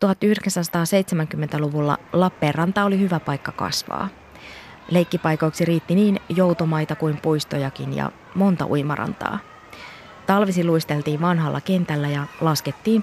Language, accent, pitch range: Finnish, native, 150-195 Hz